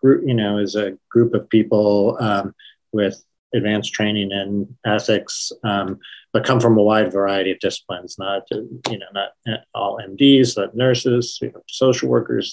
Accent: American